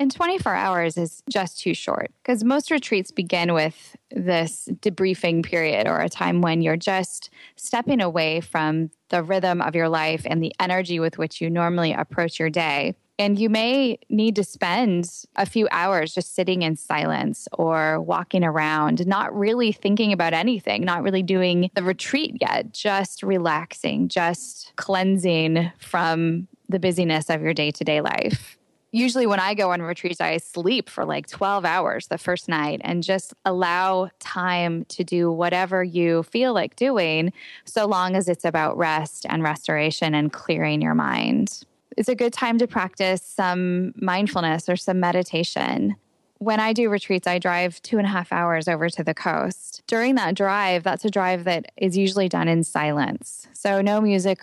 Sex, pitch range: female, 165-205 Hz